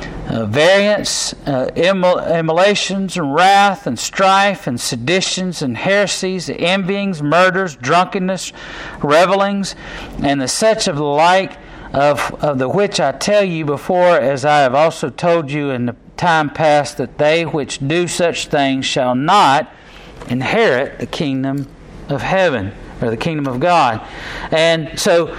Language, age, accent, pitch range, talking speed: English, 50-69, American, 145-195 Hz, 145 wpm